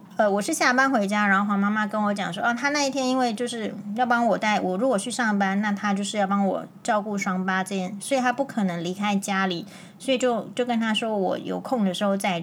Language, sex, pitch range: Chinese, female, 195-250 Hz